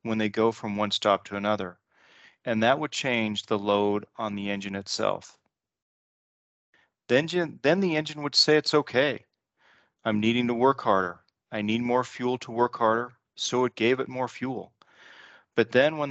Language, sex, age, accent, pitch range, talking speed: English, male, 40-59, American, 110-125 Hz, 170 wpm